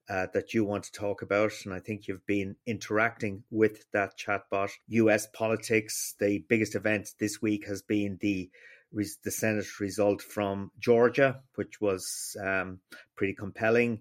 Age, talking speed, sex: 30-49, 155 wpm, male